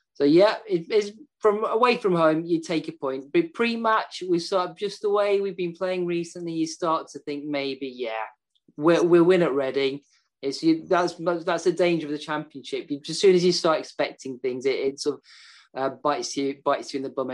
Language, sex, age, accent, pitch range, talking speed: English, male, 20-39, British, 135-175 Hz, 220 wpm